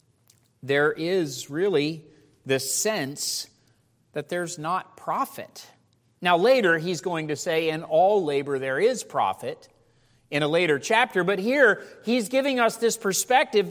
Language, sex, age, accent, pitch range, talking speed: English, male, 40-59, American, 165-210 Hz, 140 wpm